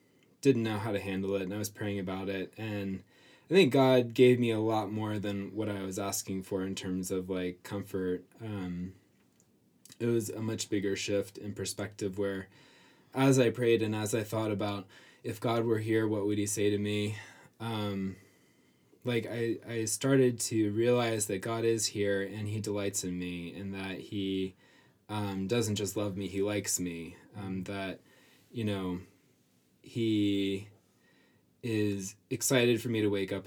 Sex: male